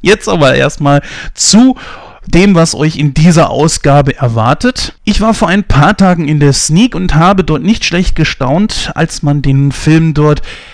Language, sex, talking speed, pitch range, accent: German, male, 175 wpm, 135-165 Hz, German